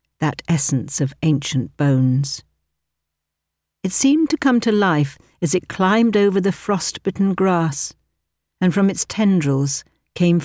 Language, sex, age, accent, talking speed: English, female, 60-79, British, 130 wpm